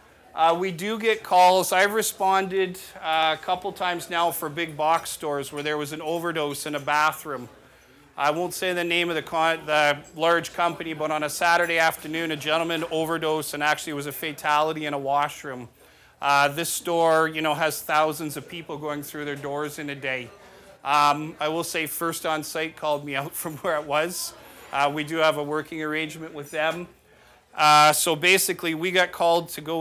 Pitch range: 145-165 Hz